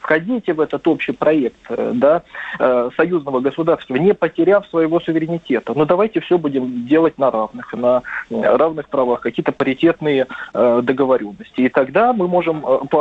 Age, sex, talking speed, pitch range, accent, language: 20-39, male, 140 wpm, 130-180 Hz, native, Russian